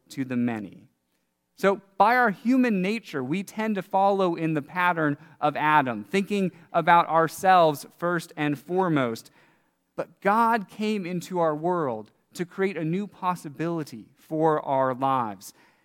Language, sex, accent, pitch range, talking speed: English, male, American, 135-180 Hz, 140 wpm